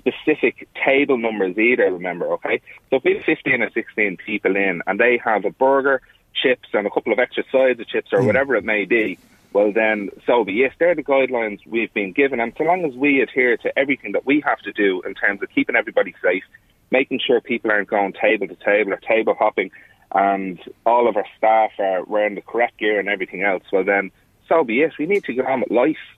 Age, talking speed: 30-49, 230 wpm